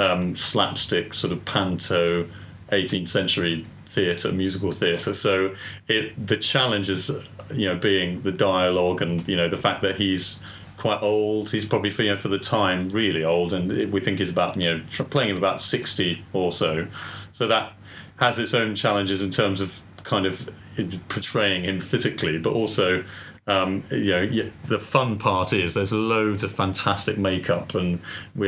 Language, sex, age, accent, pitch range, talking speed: English, male, 30-49, British, 90-105 Hz, 170 wpm